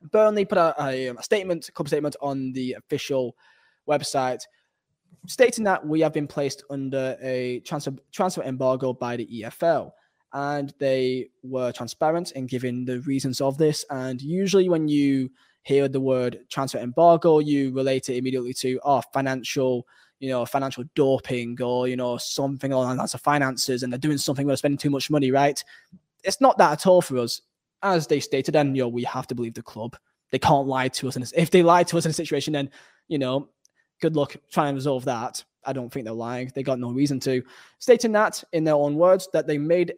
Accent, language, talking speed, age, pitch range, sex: British, English, 205 wpm, 10-29, 130-155 Hz, male